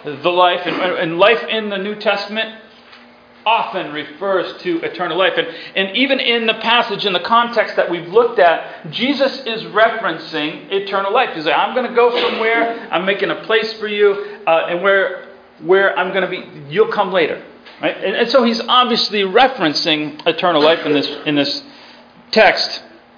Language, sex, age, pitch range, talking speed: English, male, 40-59, 175-240 Hz, 180 wpm